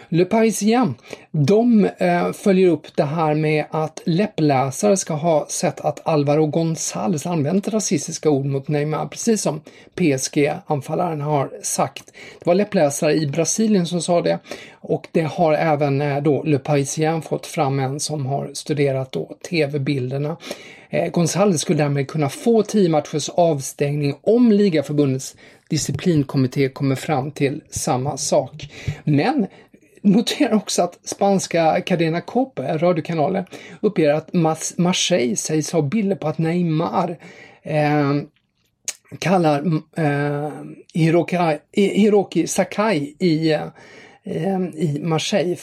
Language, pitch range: English, 145-185 Hz